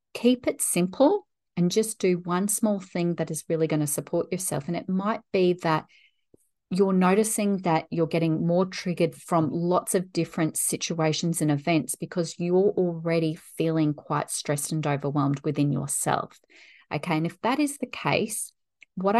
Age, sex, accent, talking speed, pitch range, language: 30-49, female, Australian, 165 wpm, 155-195 Hz, English